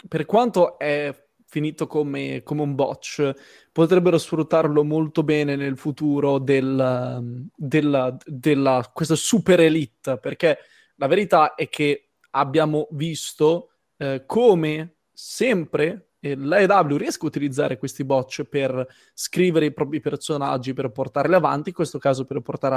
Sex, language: male, Italian